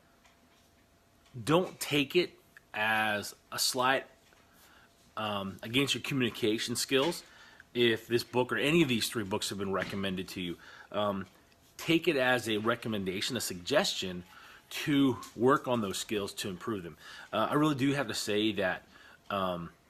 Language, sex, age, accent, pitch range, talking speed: English, male, 30-49, American, 100-130 Hz, 150 wpm